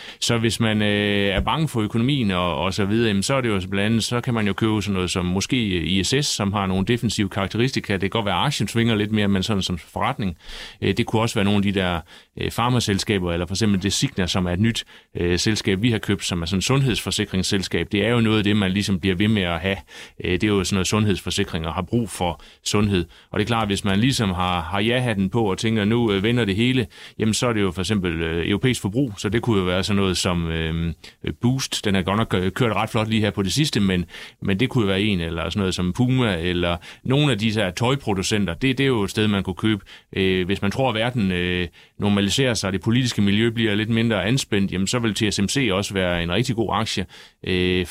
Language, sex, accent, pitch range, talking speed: Danish, male, native, 95-115 Hz, 235 wpm